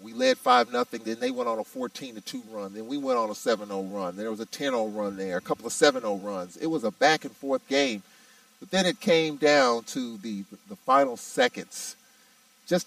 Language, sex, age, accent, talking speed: English, male, 40-59, American, 210 wpm